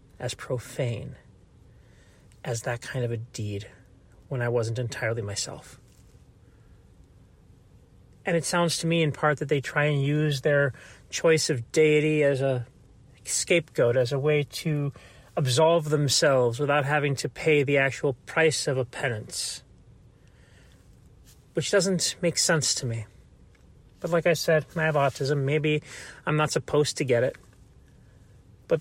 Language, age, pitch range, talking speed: English, 30-49, 125-155 Hz, 145 wpm